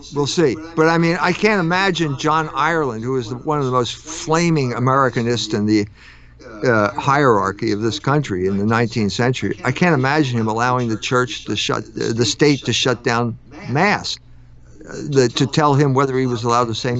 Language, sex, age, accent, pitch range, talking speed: English, male, 50-69, American, 125-170 Hz, 195 wpm